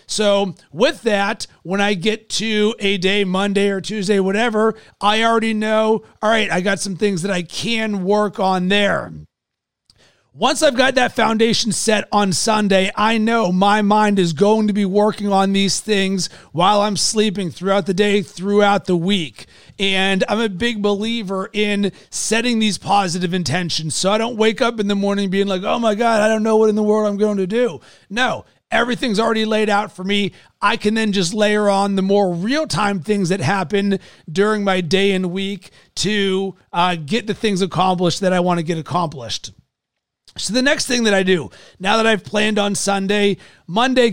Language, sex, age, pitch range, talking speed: English, male, 30-49, 190-215 Hz, 190 wpm